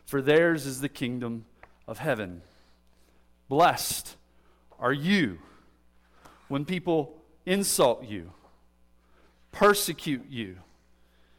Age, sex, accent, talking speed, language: 40-59, male, American, 85 wpm, English